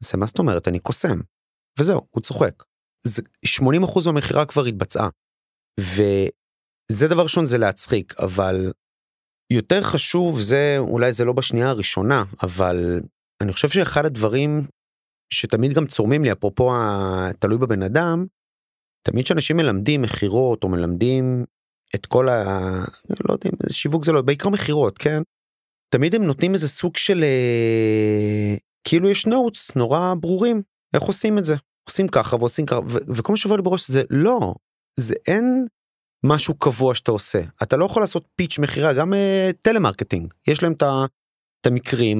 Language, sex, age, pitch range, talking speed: Hebrew, male, 30-49, 110-160 Hz, 150 wpm